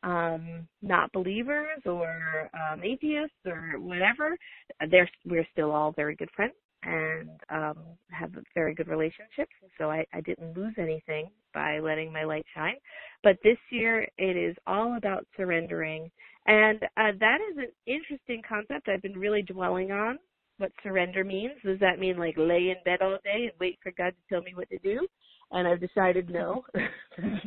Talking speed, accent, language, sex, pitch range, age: 175 wpm, American, English, female, 175-225 Hz, 40-59